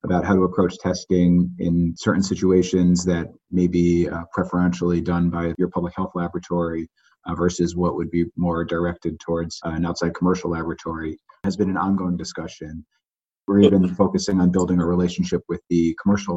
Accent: American